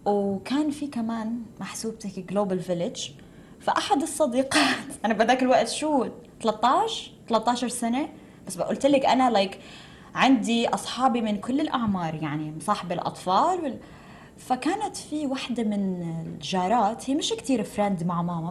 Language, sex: Arabic, female